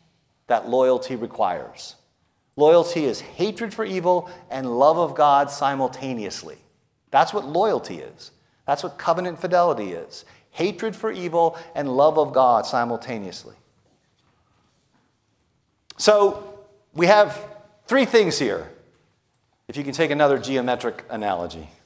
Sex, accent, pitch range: male, American, 135-180 Hz